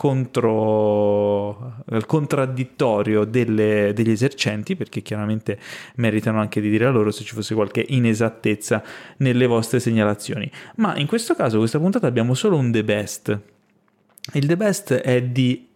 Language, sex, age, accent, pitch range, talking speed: Italian, male, 20-39, native, 115-155 Hz, 145 wpm